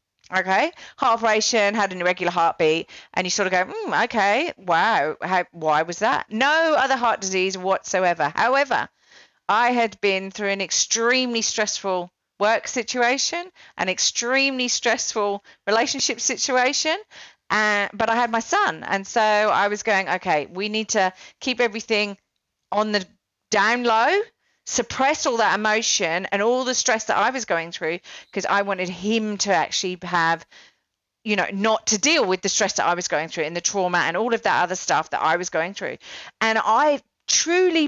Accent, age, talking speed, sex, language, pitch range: British, 40-59, 170 wpm, female, English, 185-245 Hz